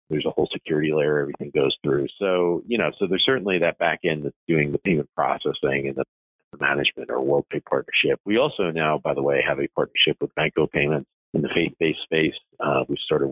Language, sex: English, male